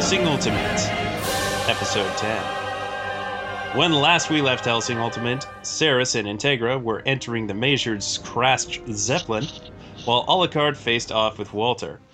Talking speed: 125 wpm